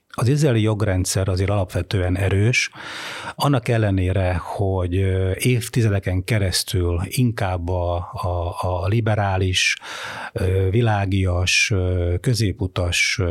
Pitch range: 95-115 Hz